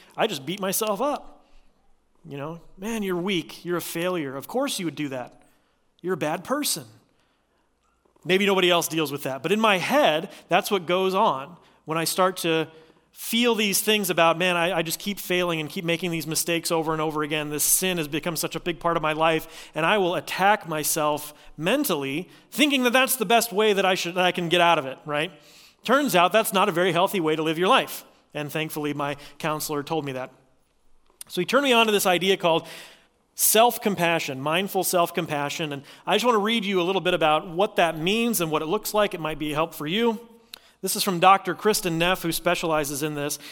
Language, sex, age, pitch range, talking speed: English, male, 30-49, 155-195 Hz, 220 wpm